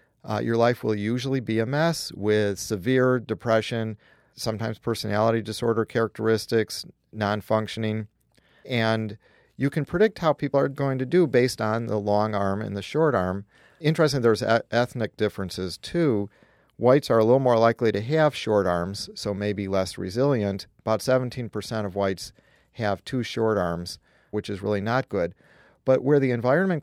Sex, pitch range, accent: male, 105-130 Hz, American